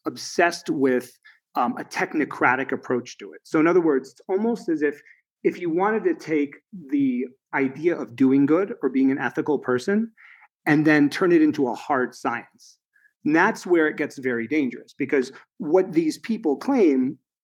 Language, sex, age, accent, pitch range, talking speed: English, male, 40-59, American, 130-205 Hz, 175 wpm